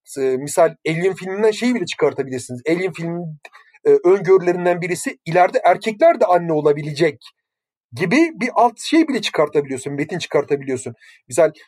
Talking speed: 135 wpm